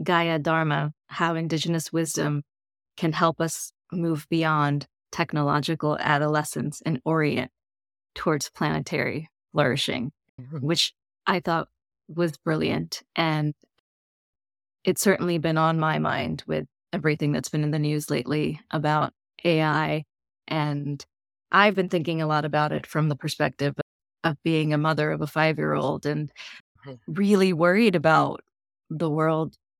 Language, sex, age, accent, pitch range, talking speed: English, female, 20-39, American, 145-170 Hz, 125 wpm